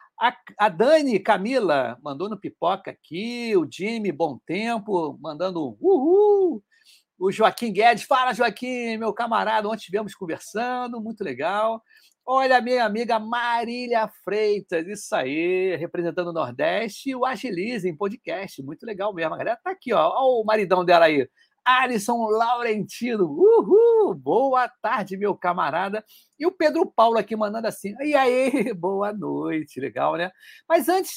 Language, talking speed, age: Portuguese, 140 wpm, 60-79